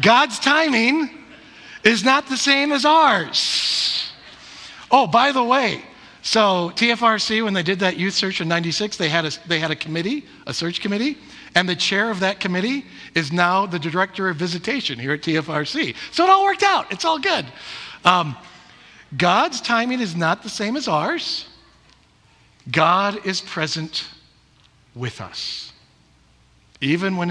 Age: 50-69